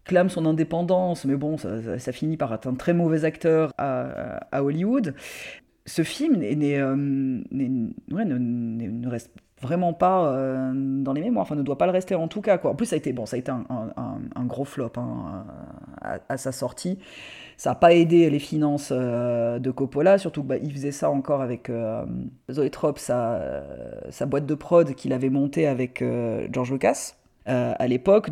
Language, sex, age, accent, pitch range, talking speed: French, female, 30-49, French, 130-175 Hz, 205 wpm